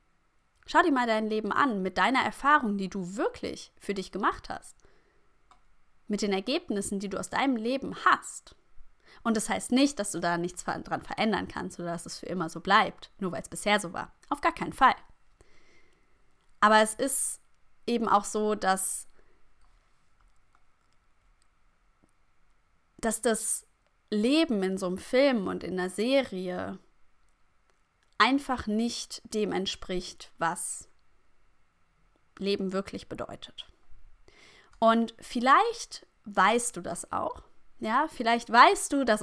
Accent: German